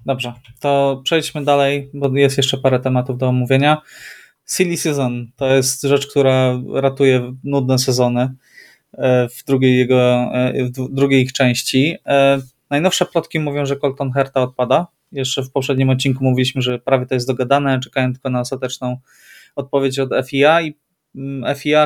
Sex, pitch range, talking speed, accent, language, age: male, 125-145 Hz, 140 wpm, native, Polish, 20-39